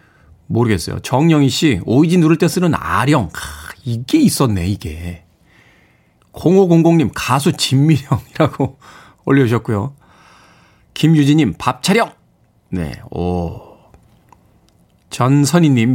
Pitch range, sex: 115-165 Hz, male